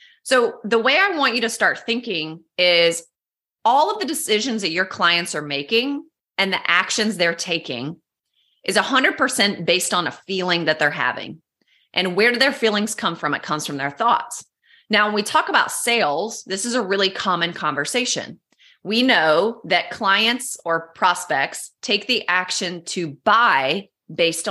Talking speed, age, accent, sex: 170 wpm, 30-49, American, female